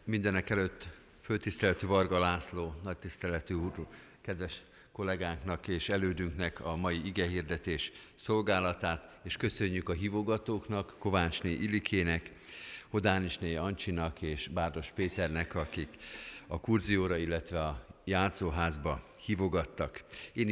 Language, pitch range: Hungarian, 85-105 Hz